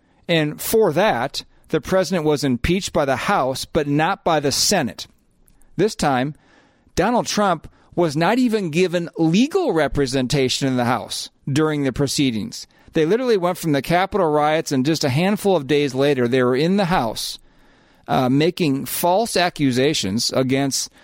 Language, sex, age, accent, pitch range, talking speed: English, male, 40-59, American, 125-165 Hz, 155 wpm